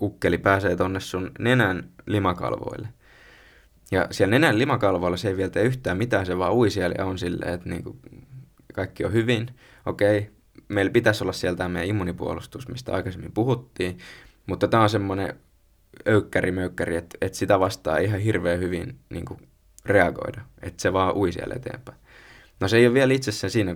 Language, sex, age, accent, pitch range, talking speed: Finnish, male, 20-39, native, 90-120 Hz, 170 wpm